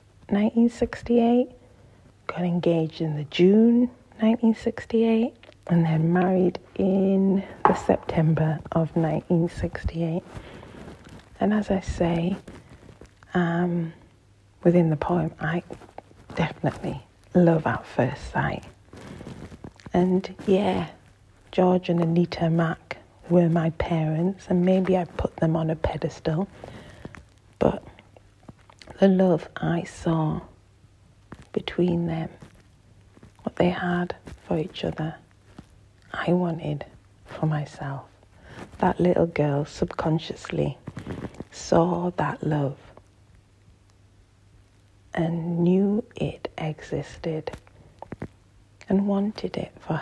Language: English